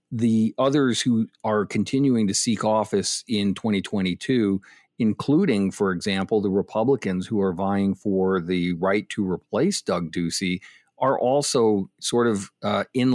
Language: English